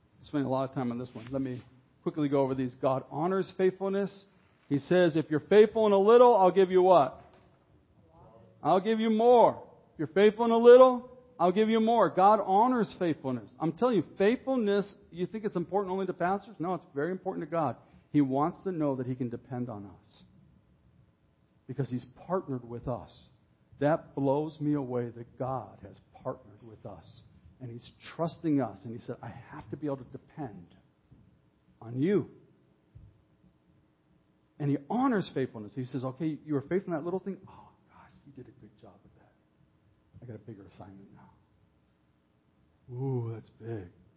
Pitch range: 120-185 Hz